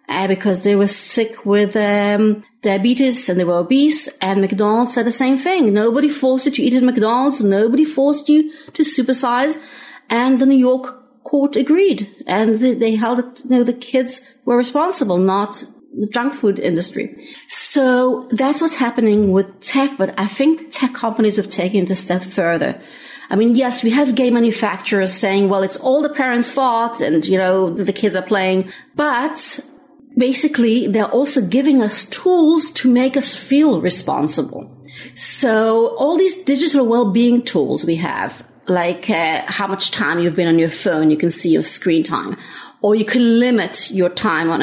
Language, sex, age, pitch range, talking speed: English, female, 40-59, 200-270 Hz, 180 wpm